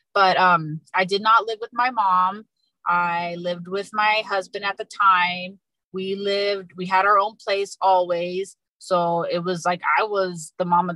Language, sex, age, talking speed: English, female, 20-39, 185 wpm